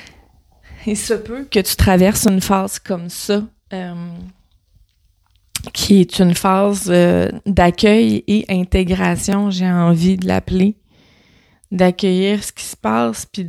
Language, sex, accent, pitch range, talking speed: French, female, Canadian, 175-205 Hz, 130 wpm